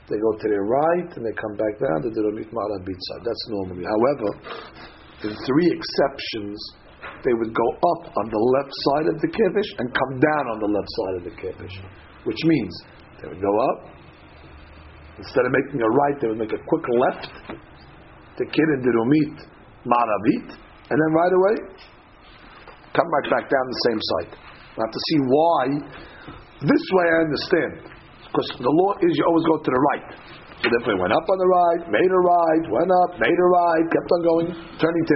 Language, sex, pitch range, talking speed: English, male, 135-175 Hz, 190 wpm